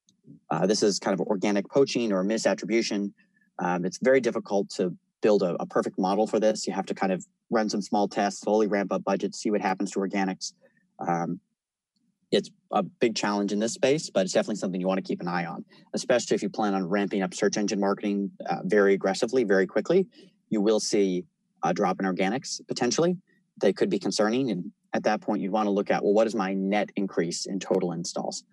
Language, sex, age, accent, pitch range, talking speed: English, male, 30-49, American, 95-125 Hz, 215 wpm